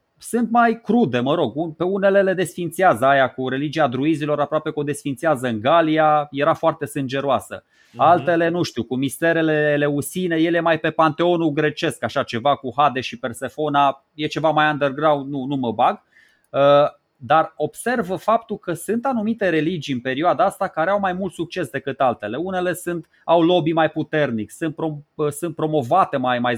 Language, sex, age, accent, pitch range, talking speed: Romanian, male, 20-39, native, 135-170 Hz, 175 wpm